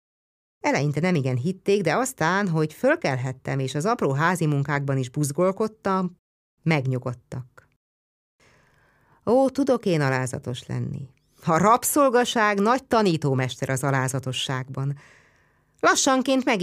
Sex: female